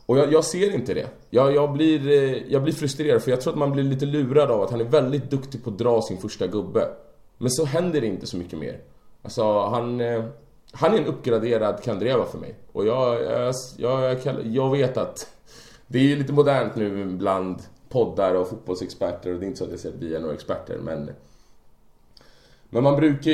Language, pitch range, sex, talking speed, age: Swedish, 105-140 Hz, male, 205 wpm, 20-39